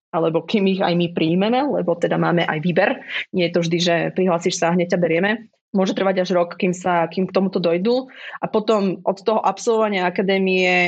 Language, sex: Slovak, female